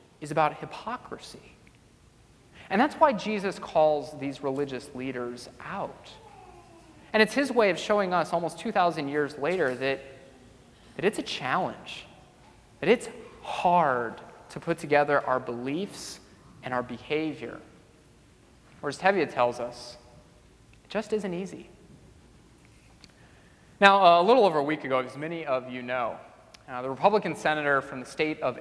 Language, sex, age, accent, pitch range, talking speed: English, male, 30-49, American, 130-165 Hz, 145 wpm